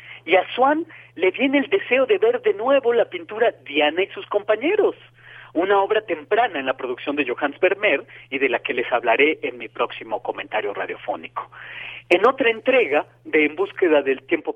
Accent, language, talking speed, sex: Mexican, Spanish, 185 wpm, male